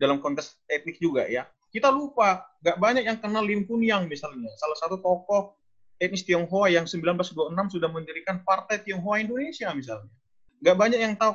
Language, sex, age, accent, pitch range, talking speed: Indonesian, male, 30-49, native, 170-230 Hz, 170 wpm